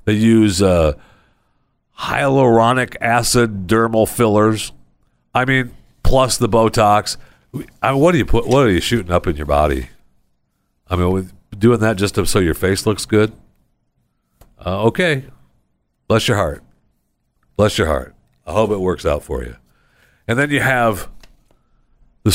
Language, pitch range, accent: English, 100-125 Hz, American